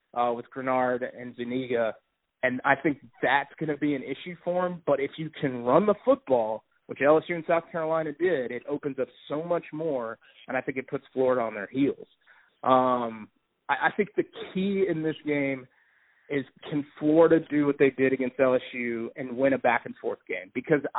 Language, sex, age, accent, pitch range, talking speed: English, male, 30-49, American, 125-155 Hz, 195 wpm